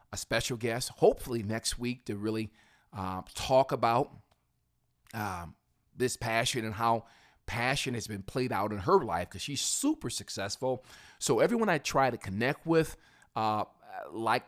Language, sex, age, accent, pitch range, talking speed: English, male, 40-59, American, 100-125 Hz, 150 wpm